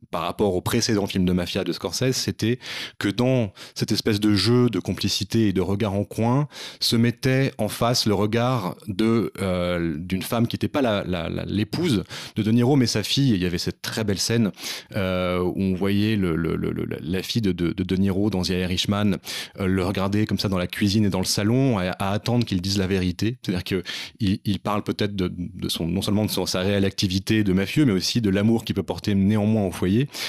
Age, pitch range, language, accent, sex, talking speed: 30-49, 95-115 Hz, French, French, male, 235 wpm